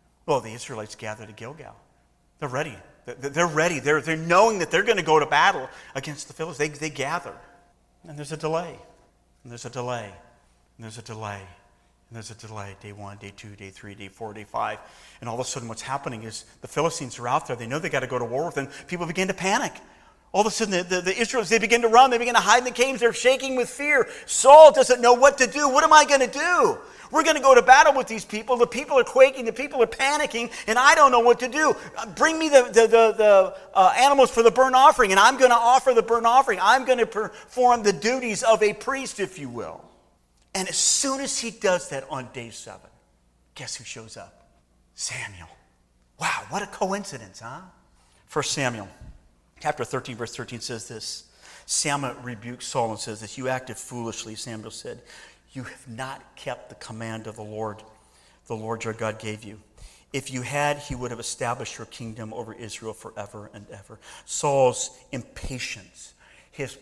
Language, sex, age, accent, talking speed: English, male, 40-59, American, 215 wpm